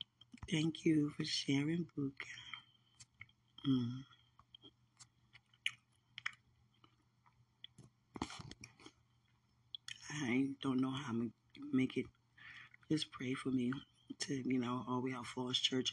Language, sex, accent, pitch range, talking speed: English, female, American, 120-145 Hz, 95 wpm